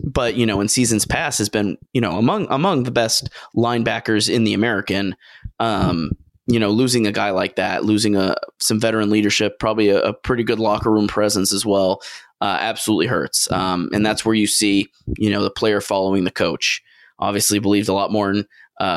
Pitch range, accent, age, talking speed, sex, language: 105-120 Hz, American, 20-39, 200 wpm, male, English